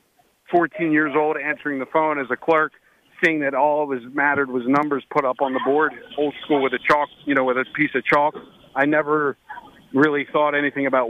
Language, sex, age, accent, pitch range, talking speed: English, male, 40-59, American, 135-160 Hz, 210 wpm